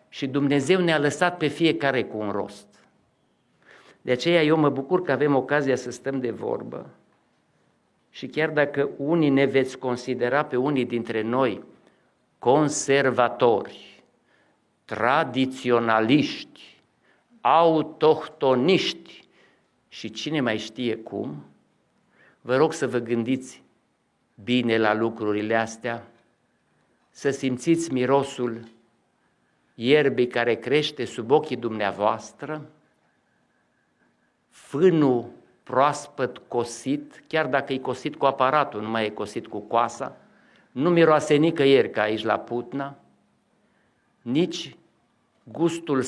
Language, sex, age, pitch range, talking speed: Romanian, male, 50-69, 115-150 Hz, 105 wpm